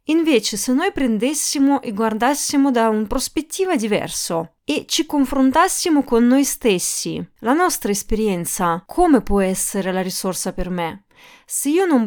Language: Italian